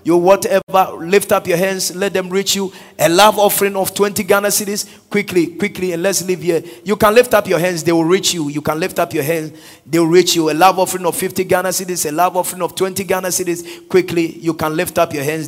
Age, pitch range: 30-49, 165-195 Hz